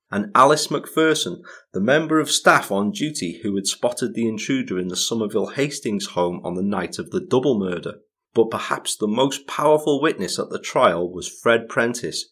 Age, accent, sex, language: 30-49, British, male, English